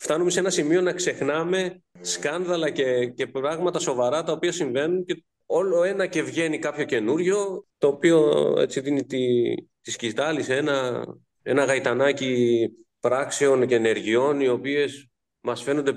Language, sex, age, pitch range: Greek, male, 30-49, 120-180 Hz